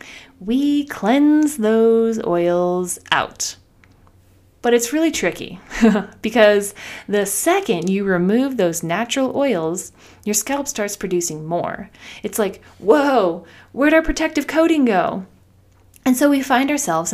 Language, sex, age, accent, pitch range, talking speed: English, female, 20-39, American, 175-255 Hz, 125 wpm